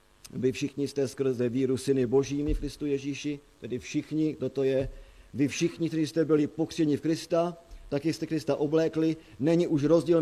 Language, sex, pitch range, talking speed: Slovak, male, 120-165 Hz, 175 wpm